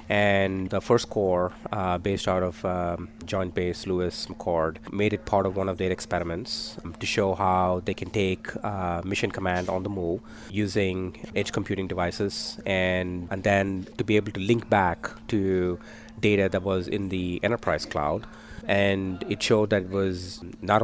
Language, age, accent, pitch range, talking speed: English, 30-49, Indian, 95-110 Hz, 175 wpm